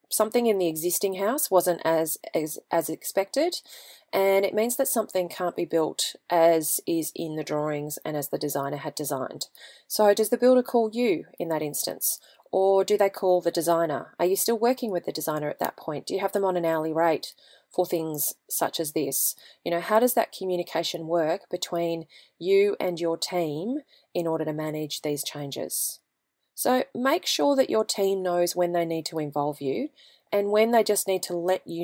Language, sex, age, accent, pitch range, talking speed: English, female, 30-49, Australian, 160-195 Hz, 200 wpm